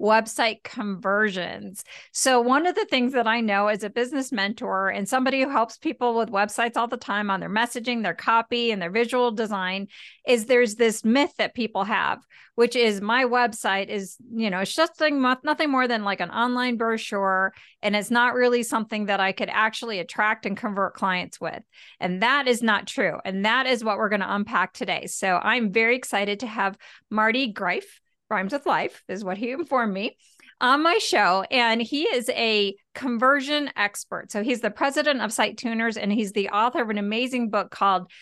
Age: 40-59